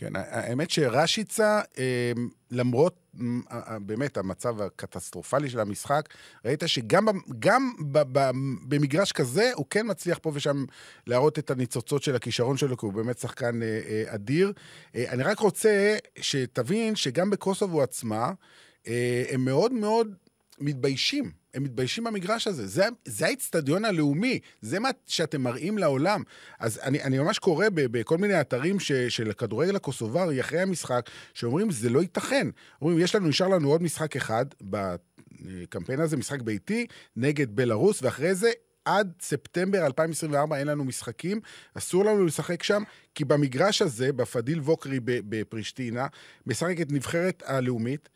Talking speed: 135 wpm